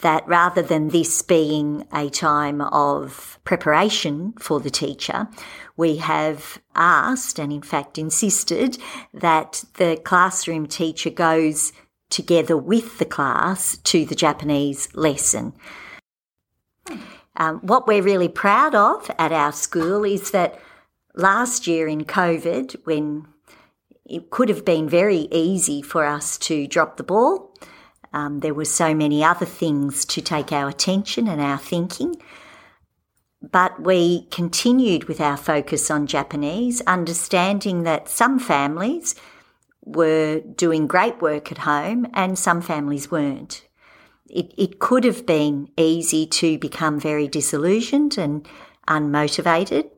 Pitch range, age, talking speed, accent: 150-190 Hz, 50-69, 130 wpm, Australian